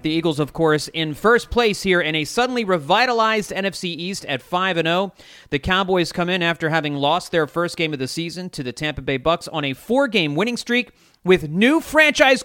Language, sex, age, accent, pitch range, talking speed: English, male, 30-49, American, 120-165 Hz, 215 wpm